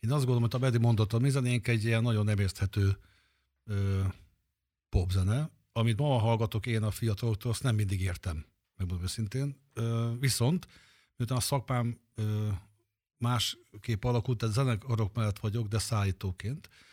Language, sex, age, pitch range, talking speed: Hungarian, male, 50-69, 100-120 Hz, 135 wpm